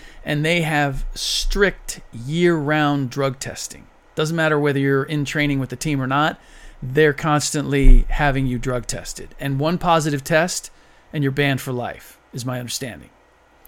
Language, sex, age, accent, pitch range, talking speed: English, male, 40-59, American, 130-155 Hz, 160 wpm